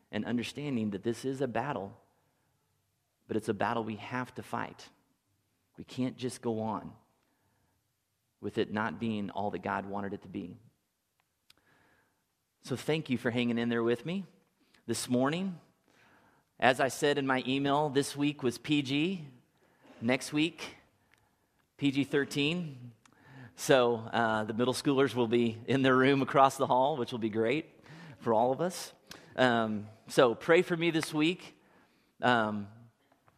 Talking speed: 150 wpm